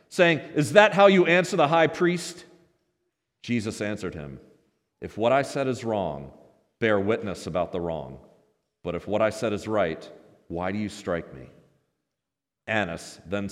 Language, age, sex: English, 40-59, male